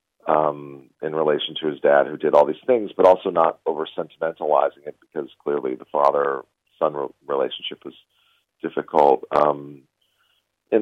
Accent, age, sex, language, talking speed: American, 40-59, male, English, 140 wpm